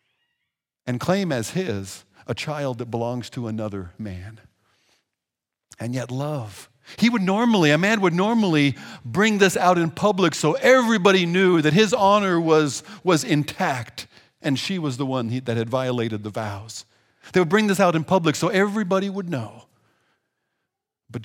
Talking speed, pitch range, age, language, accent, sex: 160 wpm, 110-155 Hz, 50-69, English, American, male